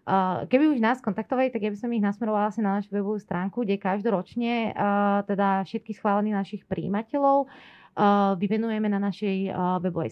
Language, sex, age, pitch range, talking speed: Slovak, female, 30-49, 185-220 Hz, 165 wpm